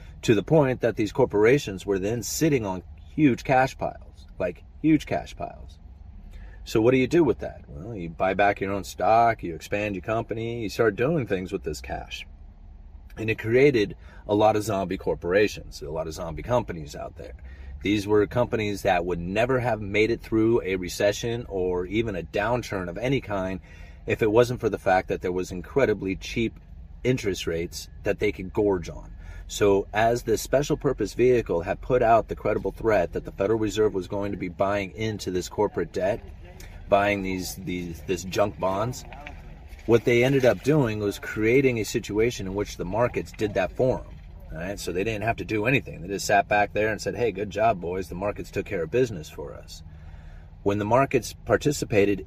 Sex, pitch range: male, 85-115 Hz